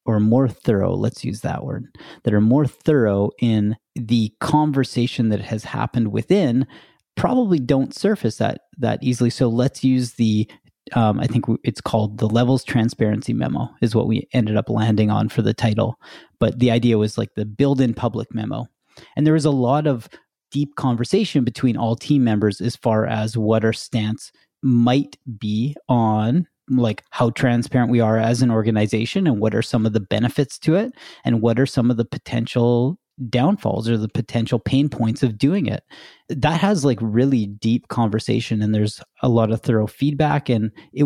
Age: 30-49